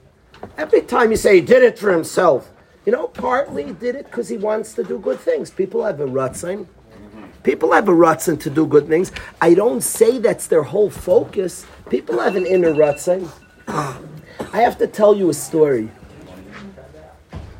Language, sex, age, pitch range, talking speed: English, male, 40-59, 155-220 Hz, 180 wpm